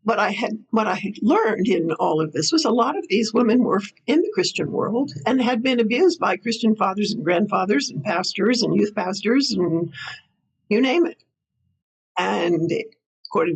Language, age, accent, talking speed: English, 60-79, American, 185 wpm